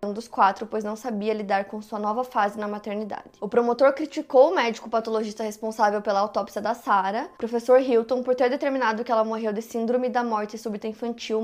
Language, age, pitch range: Portuguese, 20-39, 215-255 Hz